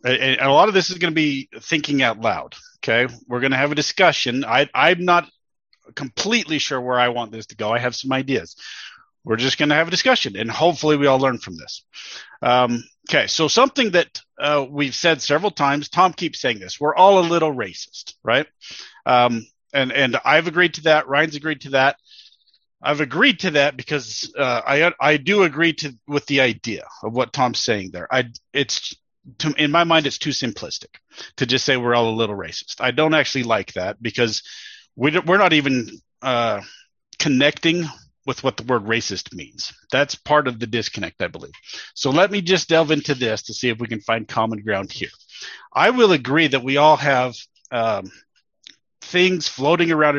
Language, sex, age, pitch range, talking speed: English, male, 40-59, 120-155 Hz, 195 wpm